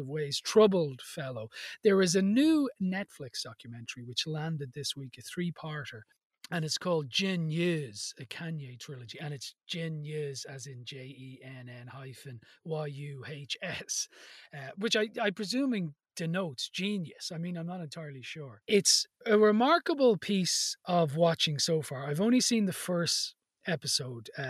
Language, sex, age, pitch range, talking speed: English, male, 30-49, 140-185 Hz, 135 wpm